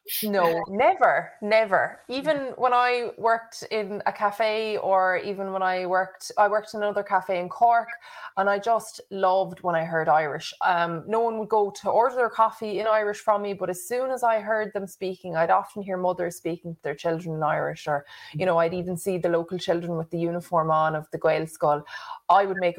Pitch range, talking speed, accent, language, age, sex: 175-230 Hz, 215 wpm, Irish, English, 20-39, female